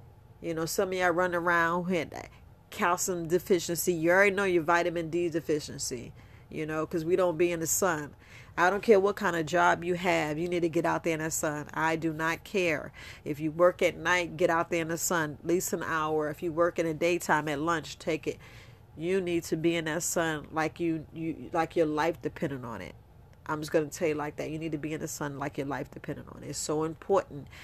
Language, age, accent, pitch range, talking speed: English, 40-59, American, 145-175 Hz, 245 wpm